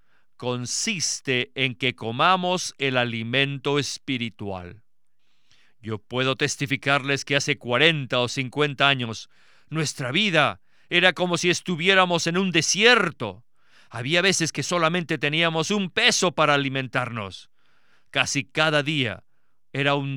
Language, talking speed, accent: Spanish, 115 wpm, Mexican